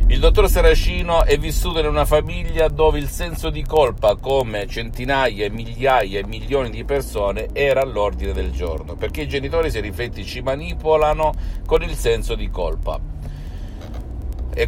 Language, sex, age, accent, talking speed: Italian, male, 50-69, native, 155 wpm